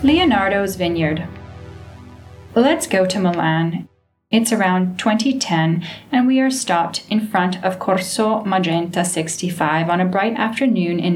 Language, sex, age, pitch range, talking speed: English, female, 10-29, 175-220 Hz, 130 wpm